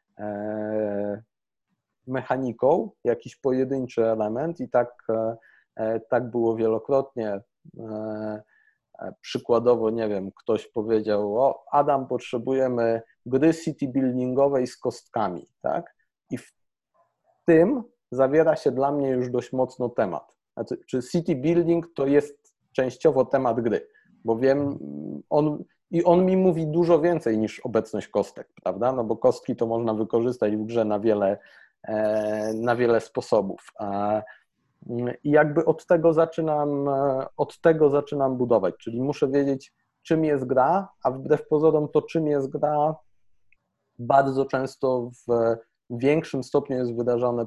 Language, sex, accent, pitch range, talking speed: Polish, male, native, 115-150 Hz, 125 wpm